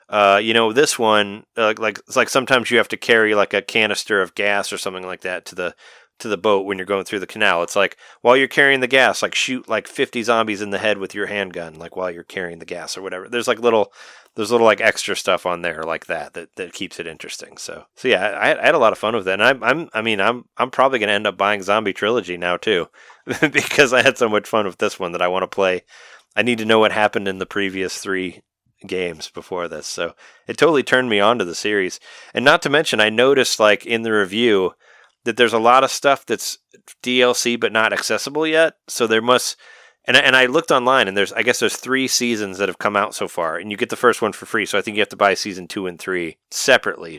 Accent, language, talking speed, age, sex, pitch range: American, English, 260 wpm, 30-49, male, 95-120 Hz